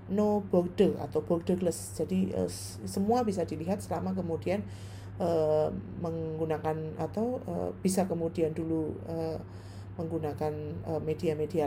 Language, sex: Indonesian, female